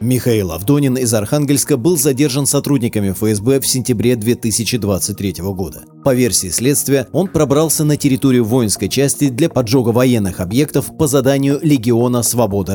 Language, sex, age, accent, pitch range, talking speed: Russian, male, 30-49, native, 110-145 Hz, 135 wpm